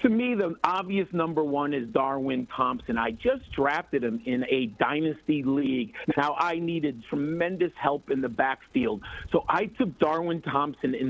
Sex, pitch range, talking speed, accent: male, 135-170 Hz, 170 wpm, American